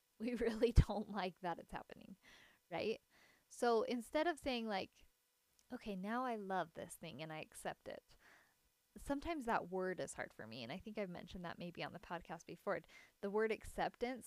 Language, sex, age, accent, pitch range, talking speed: English, female, 10-29, American, 190-235 Hz, 185 wpm